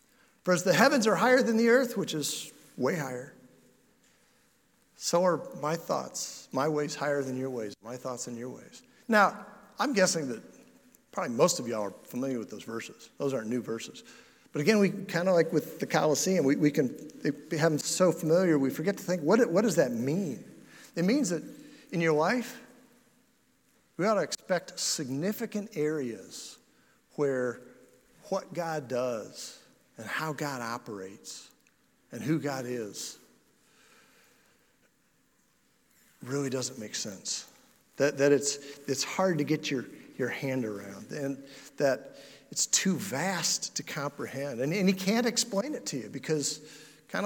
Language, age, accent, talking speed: English, 50-69, American, 160 wpm